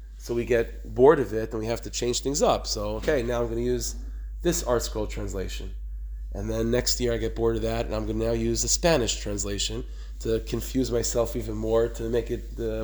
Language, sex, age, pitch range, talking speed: English, male, 30-49, 105-130 Hz, 240 wpm